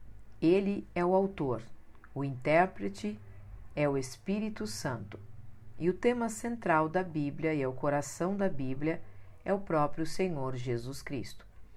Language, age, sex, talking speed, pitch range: Portuguese, 50-69, female, 145 wpm, 130-180 Hz